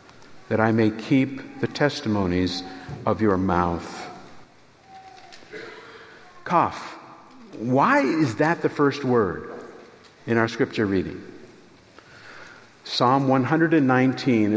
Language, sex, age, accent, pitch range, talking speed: English, male, 50-69, American, 120-170 Hz, 90 wpm